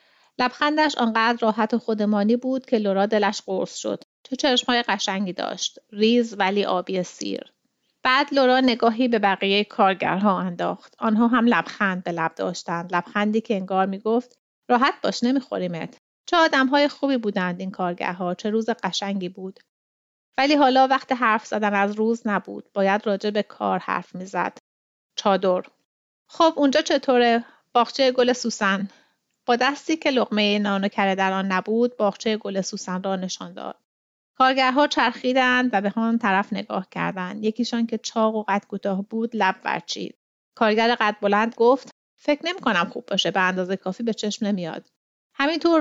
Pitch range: 200-250 Hz